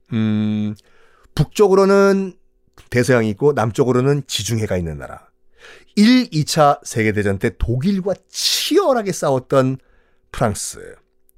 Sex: male